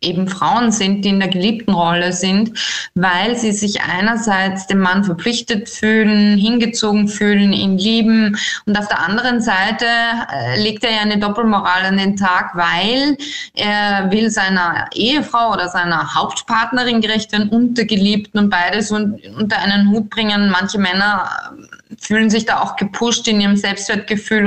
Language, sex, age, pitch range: German, female, 20-39, 195-235 Hz